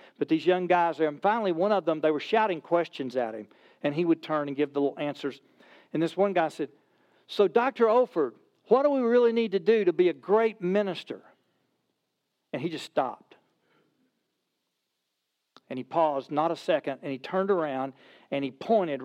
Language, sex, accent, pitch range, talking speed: English, male, American, 135-180 Hz, 195 wpm